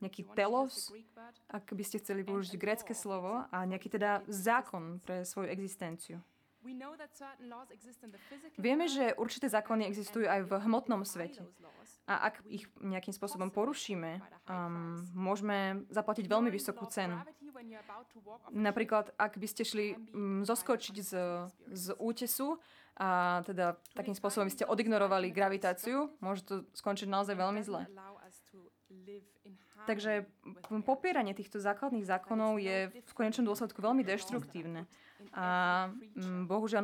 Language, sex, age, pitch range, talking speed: Slovak, female, 20-39, 185-225 Hz, 115 wpm